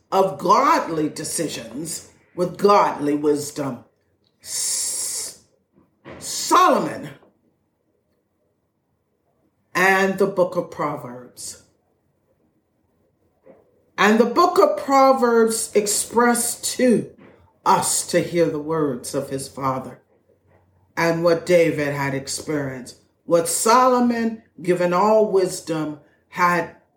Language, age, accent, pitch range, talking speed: English, 50-69, American, 145-205 Hz, 85 wpm